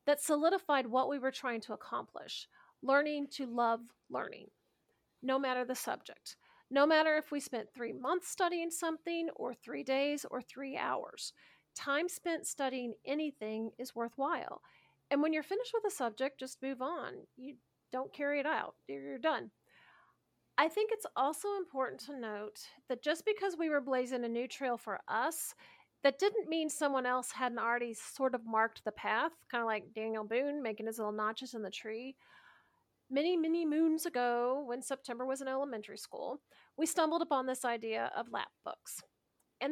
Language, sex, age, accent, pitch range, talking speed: English, female, 40-59, American, 240-300 Hz, 175 wpm